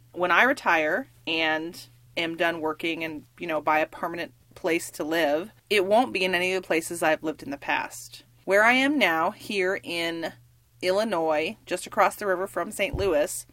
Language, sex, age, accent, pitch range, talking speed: English, female, 30-49, American, 155-220 Hz, 190 wpm